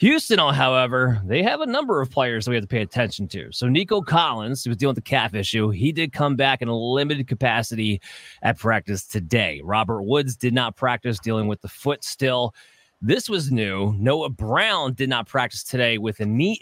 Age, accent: 30-49, American